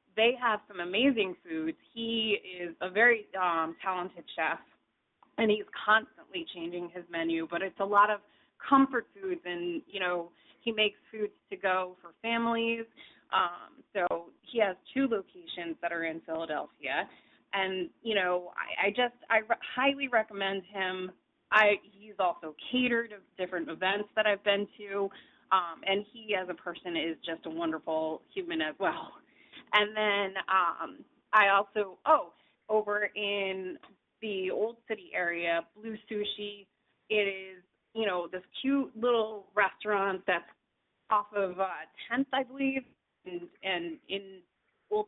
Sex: female